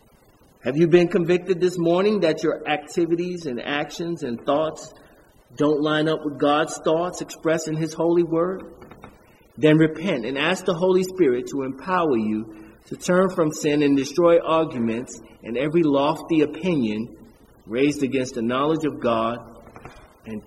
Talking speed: 150 wpm